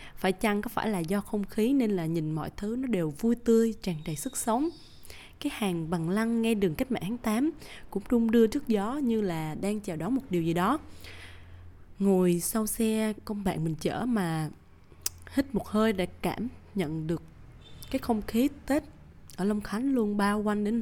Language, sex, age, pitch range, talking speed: Vietnamese, female, 20-39, 170-230 Hz, 205 wpm